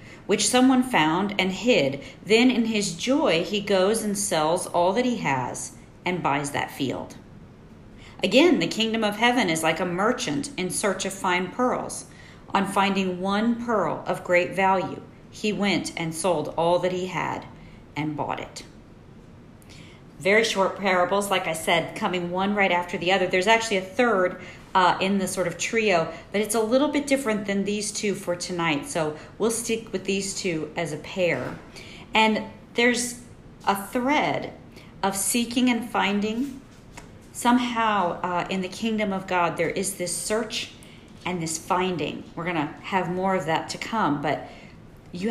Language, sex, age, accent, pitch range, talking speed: English, female, 40-59, American, 175-220 Hz, 170 wpm